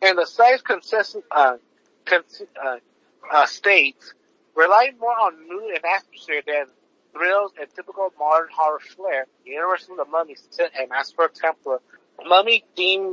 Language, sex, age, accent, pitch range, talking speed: English, male, 50-69, American, 155-230 Hz, 160 wpm